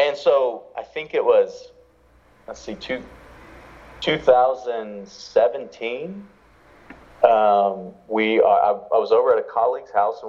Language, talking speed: English, 130 wpm